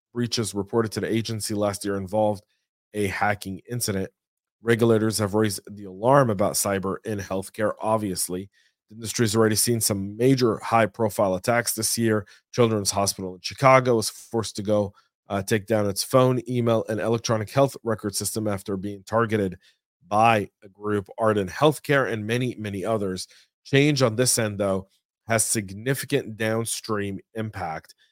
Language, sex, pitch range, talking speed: English, male, 100-115 Hz, 155 wpm